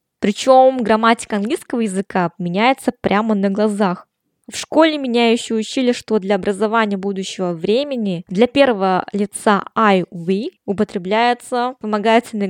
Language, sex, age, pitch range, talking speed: Russian, female, 20-39, 195-240 Hz, 115 wpm